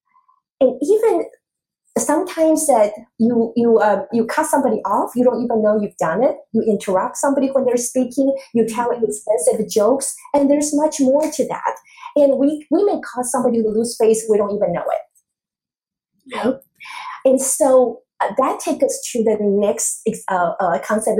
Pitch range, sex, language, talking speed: 205-295 Hz, female, English, 175 wpm